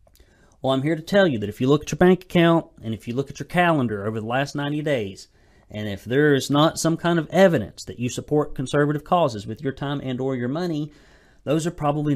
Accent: American